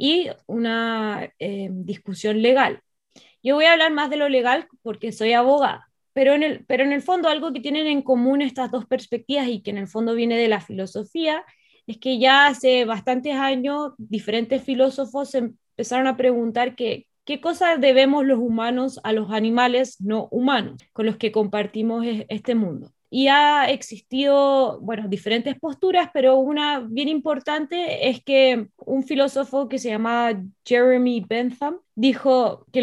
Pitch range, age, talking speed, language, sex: 230-280 Hz, 20-39, 160 wpm, Spanish, female